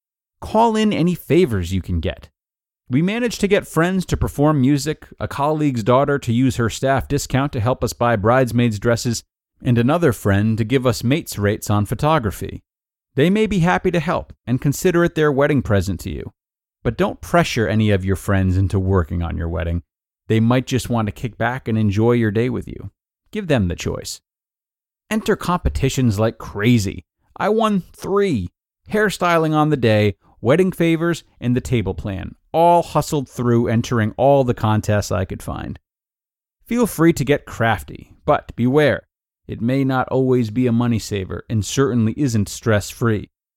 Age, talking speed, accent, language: 30-49, 175 wpm, American, English